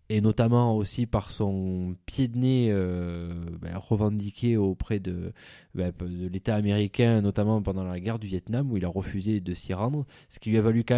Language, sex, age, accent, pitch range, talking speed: French, male, 20-39, French, 90-115 Hz, 195 wpm